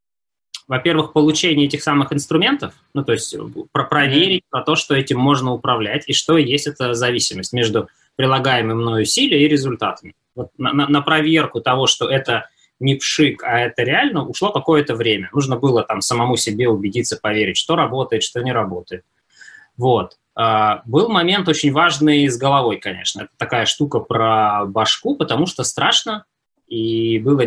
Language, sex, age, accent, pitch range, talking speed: Russian, male, 20-39, native, 115-150 Hz, 150 wpm